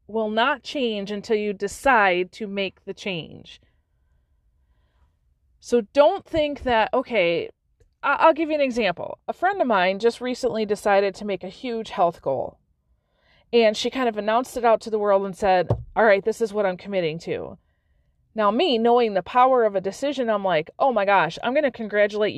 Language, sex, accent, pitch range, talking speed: English, female, American, 190-245 Hz, 190 wpm